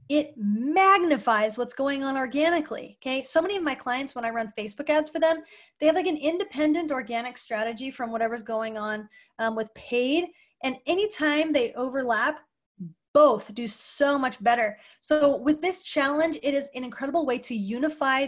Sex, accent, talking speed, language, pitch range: female, American, 175 wpm, English, 230-300 Hz